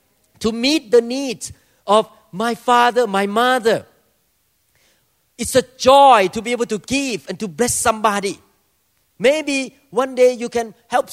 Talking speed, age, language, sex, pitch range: 145 wpm, 40-59, English, male, 155-225 Hz